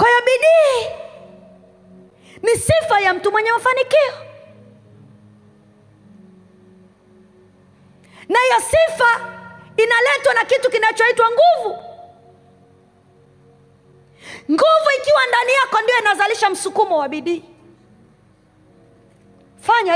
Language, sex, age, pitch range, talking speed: Swahili, female, 30-49, 285-445 Hz, 80 wpm